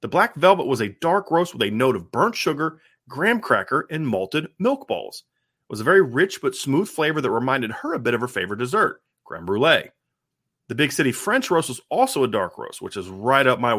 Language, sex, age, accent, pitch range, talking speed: English, male, 30-49, American, 125-195 Hz, 230 wpm